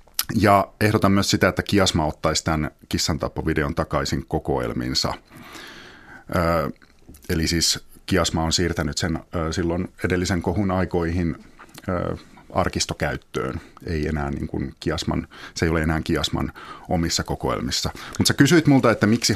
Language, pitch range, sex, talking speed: Finnish, 80-100 Hz, male, 135 wpm